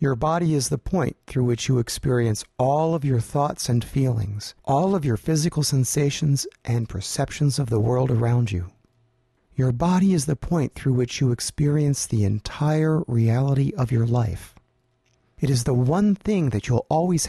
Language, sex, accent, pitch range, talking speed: English, male, American, 115-150 Hz, 175 wpm